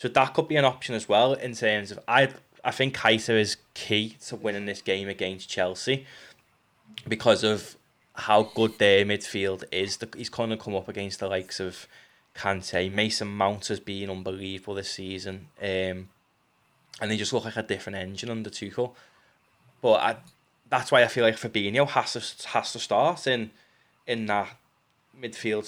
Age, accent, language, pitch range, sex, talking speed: 20-39, British, English, 105-130 Hz, male, 175 wpm